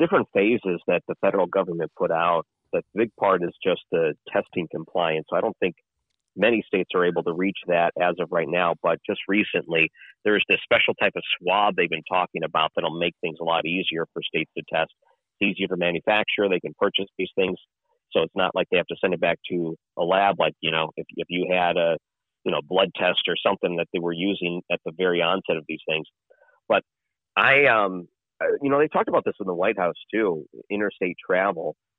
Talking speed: 220 wpm